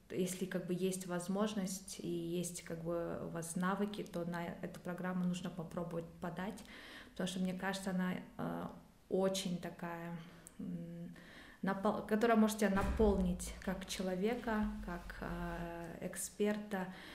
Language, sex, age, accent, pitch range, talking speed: Russian, female, 20-39, native, 180-210 Hz, 120 wpm